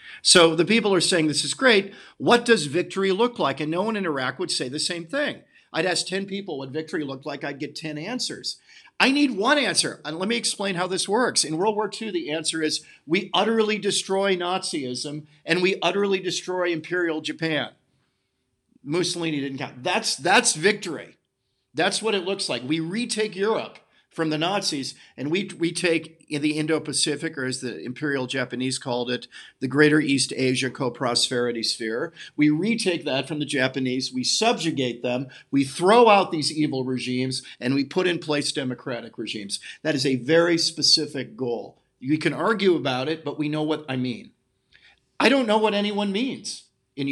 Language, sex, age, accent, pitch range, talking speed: English, male, 50-69, American, 135-190 Hz, 185 wpm